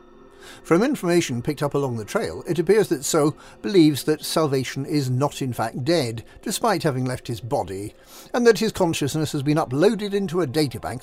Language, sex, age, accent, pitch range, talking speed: English, male, 50-69, British, 130-185 Hz, 185 wpm